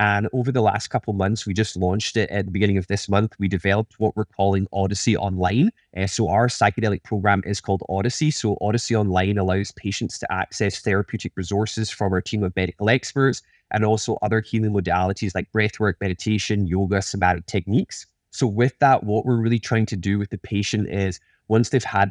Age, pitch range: 20-39, 100-115 Hz